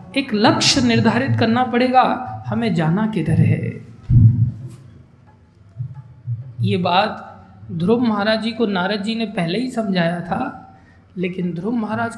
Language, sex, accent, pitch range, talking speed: Hindi, male, native, 130-215 Hz, 125 wpm